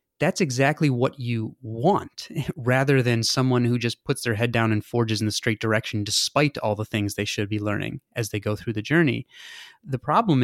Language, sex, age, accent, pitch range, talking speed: English, male, 30-49, American, 110-145 Hz, 205 wpm